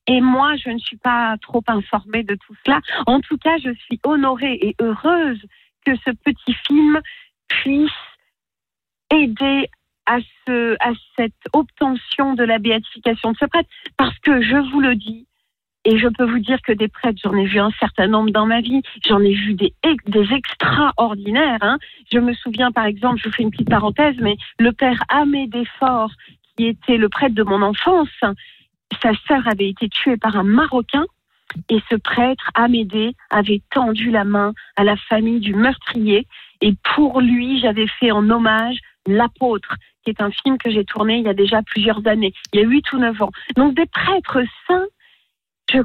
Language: French